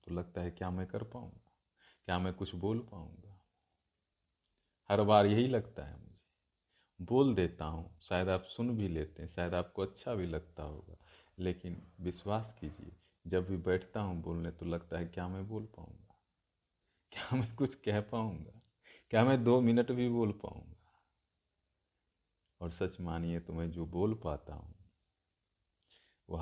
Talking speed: 155 wpm